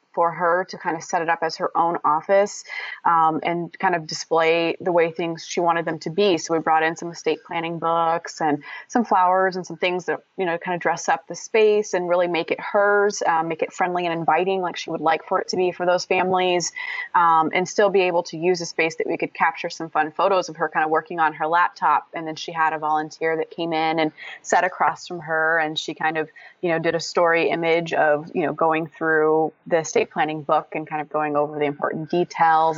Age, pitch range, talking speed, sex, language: 20-39, 160-190 Hz, 245 wpm, female, English